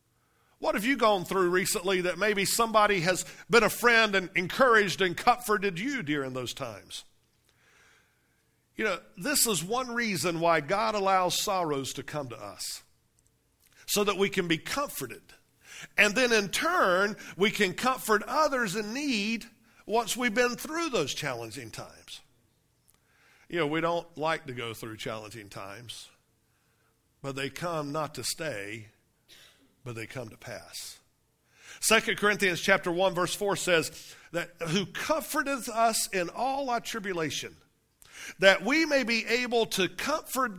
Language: English